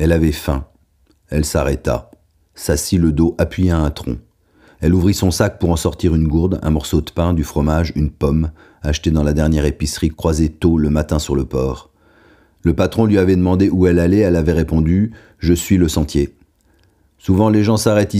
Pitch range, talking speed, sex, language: 75-90 Hz, 200 wpm, male, French